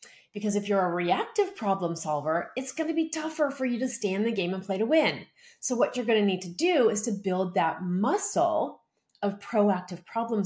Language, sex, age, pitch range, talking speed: English, female, 30-49, 180-235 Hz, 225 wpm